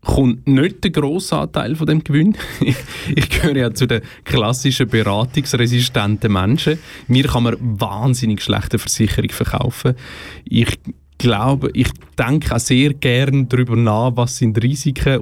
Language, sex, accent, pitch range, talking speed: German, male, Austrian, 105-130 Hz, 130 wpm